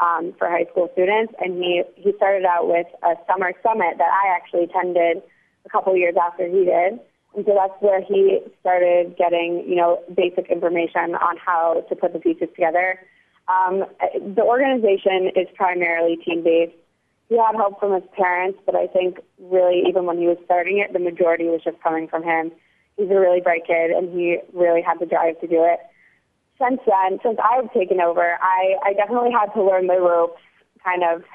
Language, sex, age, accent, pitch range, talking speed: English, female, 20-39, American, 175-195 Hz, 195 wpm